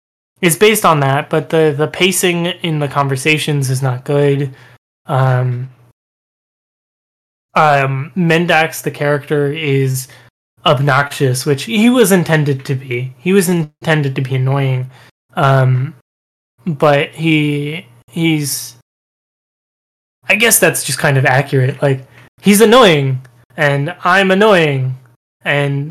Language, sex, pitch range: English, male, 130-160 Hz